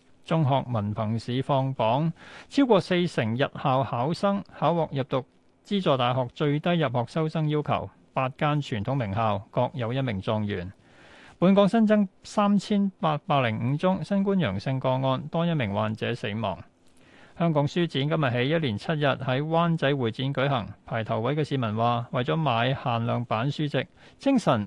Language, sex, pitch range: Chinese, male, 120-165 Hz